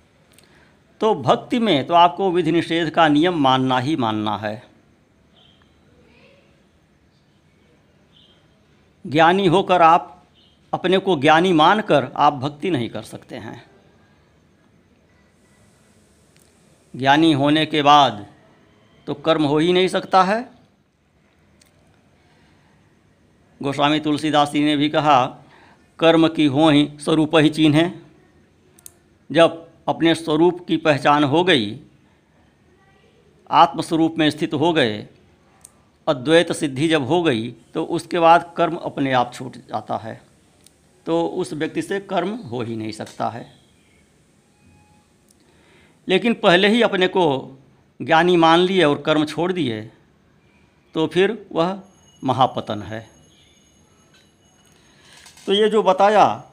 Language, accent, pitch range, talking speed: Hindi, native, 135-170 Hz, 115 wpm